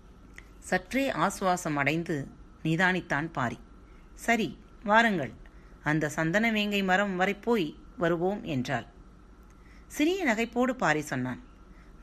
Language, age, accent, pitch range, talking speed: Tamil, 30-49, native, 150-205 Hz, 90 wpm